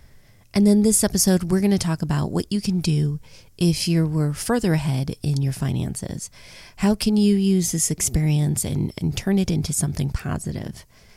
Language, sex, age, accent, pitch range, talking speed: English, female, 30-49, American, 155-195 Hz, 185 wpm